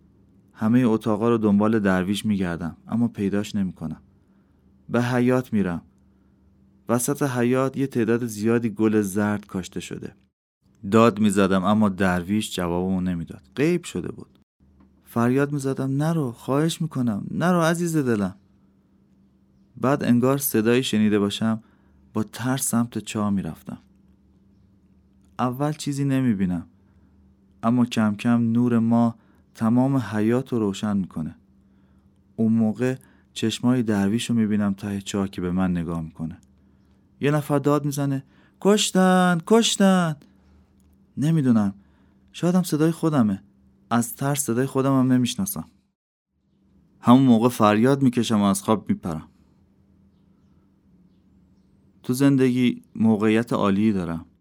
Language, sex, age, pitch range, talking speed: Persian, male, 30-49, 95-125 Hz, 115 wpm